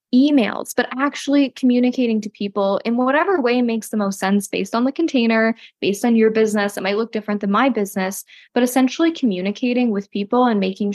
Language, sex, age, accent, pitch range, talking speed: English, female, 10-29, American, 200-255 Hz, 190 wpm